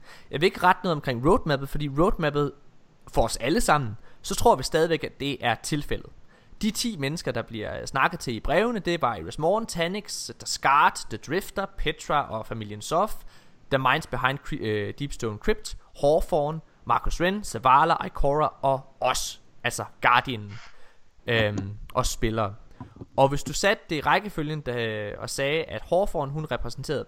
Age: 20-39